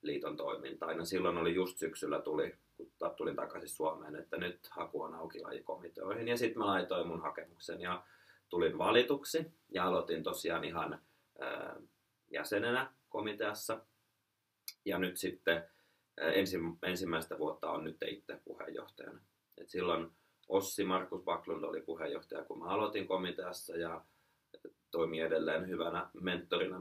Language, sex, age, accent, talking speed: Finnish, male, 30-49, native, 125 wpm